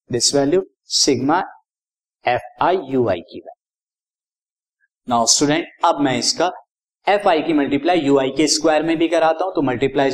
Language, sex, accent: Hindi, male, native